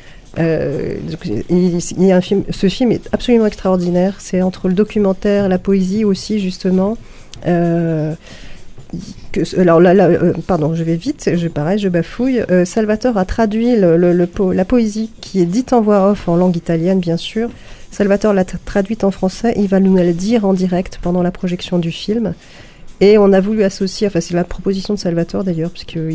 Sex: female